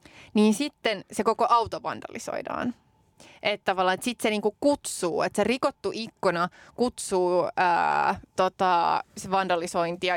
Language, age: Finnish, 20-39